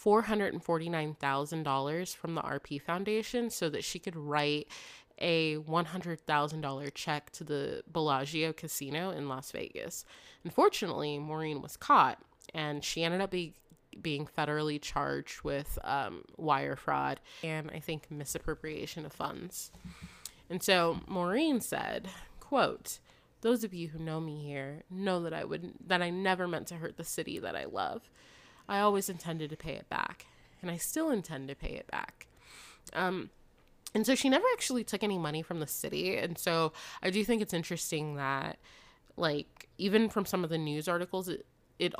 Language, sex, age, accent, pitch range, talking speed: English, female, 20-39, American, 150-190 Hz, 160 wpm